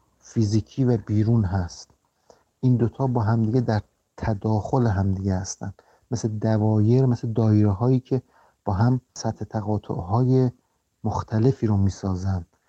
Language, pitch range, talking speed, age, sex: Persian, 110-125 Hz, 130 wpm, 50-69, male